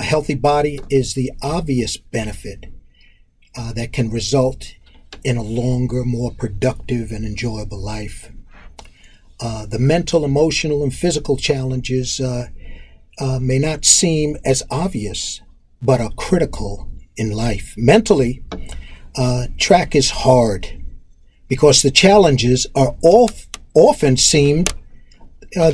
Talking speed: 115 wpm